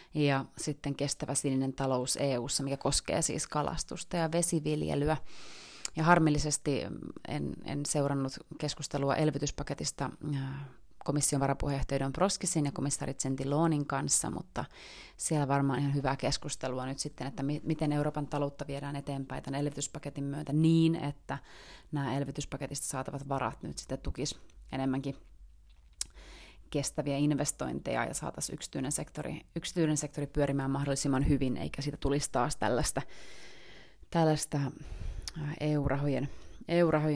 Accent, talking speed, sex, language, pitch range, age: native, 115 wpm, female, Finnish, 135-150 Hz, 30-49